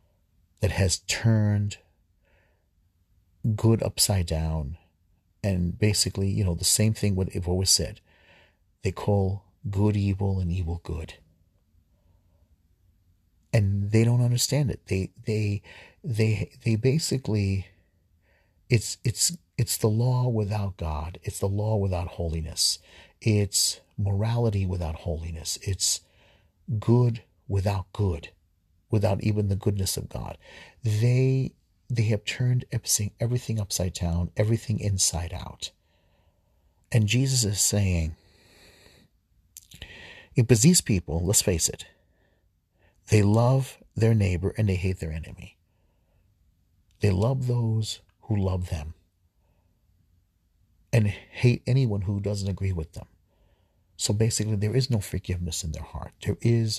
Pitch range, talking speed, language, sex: 85-110 Hz, 120 wpm, English, male